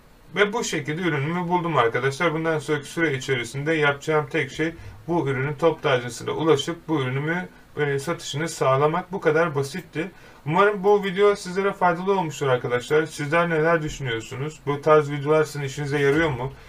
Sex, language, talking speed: male, Turkish, 150 wpm